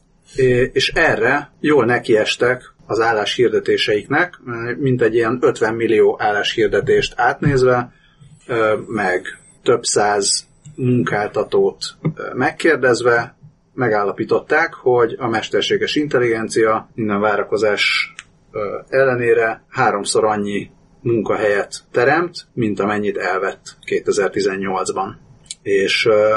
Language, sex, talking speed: Hungarian, male, 80 wpm